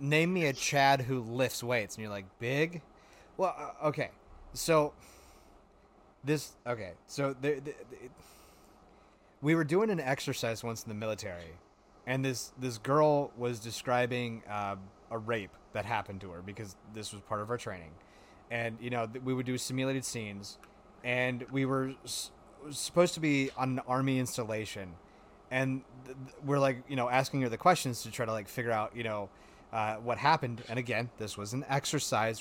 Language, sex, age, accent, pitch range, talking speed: English, male, 30-49, American, 110-135 Hz, 170 wpm